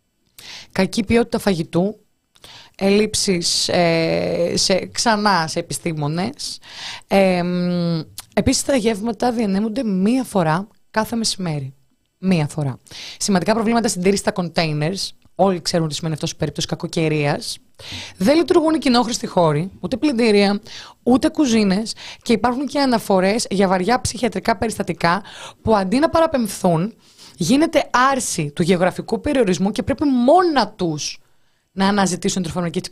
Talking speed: 125 wpm